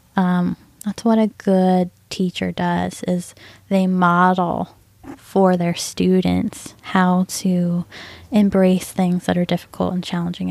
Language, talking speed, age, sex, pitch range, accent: English, 125 wpm, 10-29, female, 175-195 Hz, American